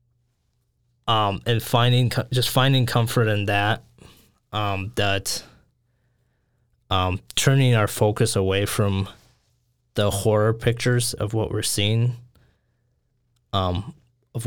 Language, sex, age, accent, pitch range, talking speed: English, male, 20-39, American, 100-120 Hz, 105 wpm